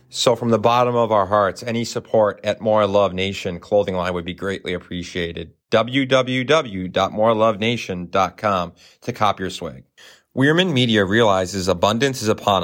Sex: male